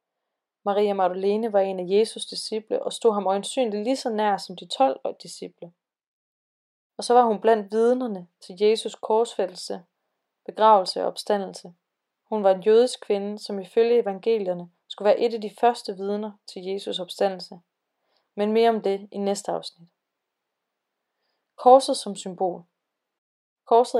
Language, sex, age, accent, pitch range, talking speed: Danish, female, 20-39, native, 200-235 Hz, 150 wpm